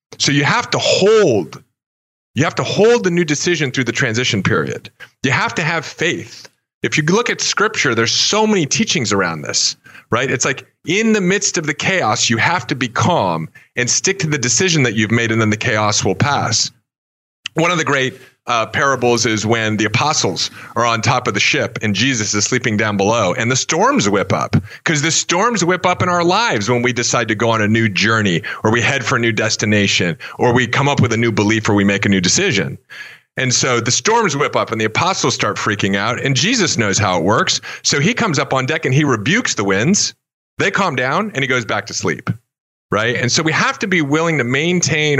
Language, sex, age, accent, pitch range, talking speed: English, male, 40-59, American, 115-155 Hz, 230 wpm